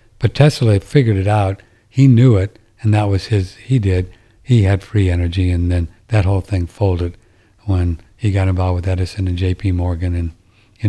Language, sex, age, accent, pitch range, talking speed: English, male, 60-79, American, 95-115 Hz, 195 wpm